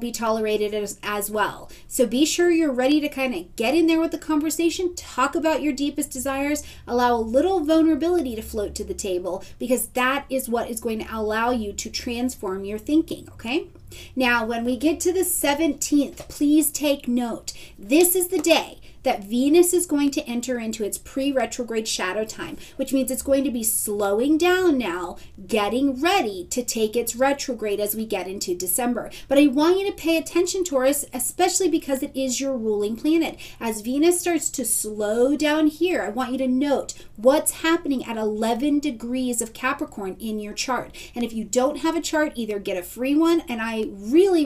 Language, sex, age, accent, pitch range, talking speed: English, female, 30-49, American, 220-305 Hz, 195 wpm